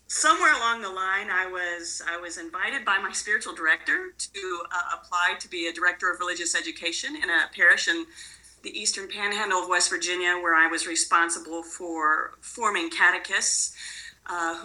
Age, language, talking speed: 40-59, English, 170 wpm